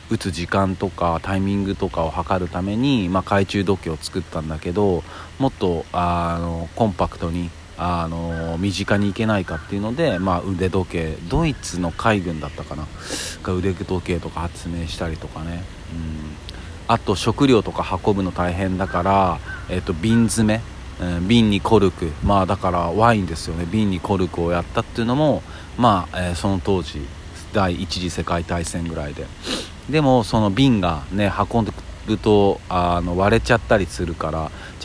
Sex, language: male, Japanese